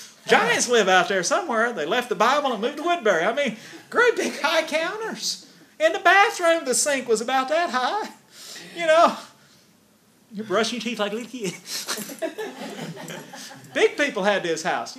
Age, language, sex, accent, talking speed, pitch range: 40-59, English, male, American, 170 wpm, 200-255 Hz